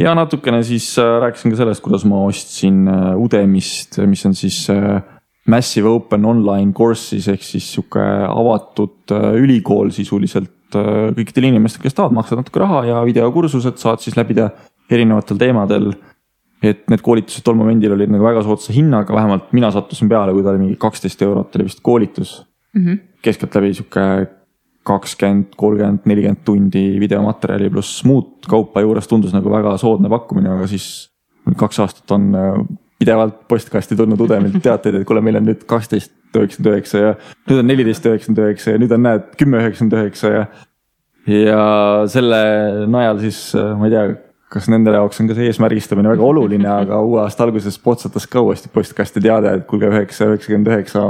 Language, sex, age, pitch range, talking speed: English, male, 20-39, 100-115 Hz, 150 wpm